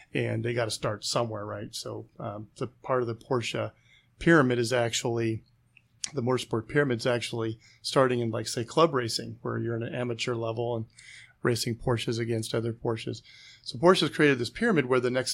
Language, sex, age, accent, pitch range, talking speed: English, male, 40-59, American, 115-130 Hz, 190 wpm